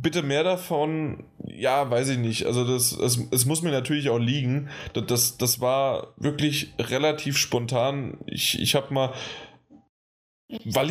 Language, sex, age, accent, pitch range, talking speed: German, male, 10-29, German, 115-140 Hz, 160 wpm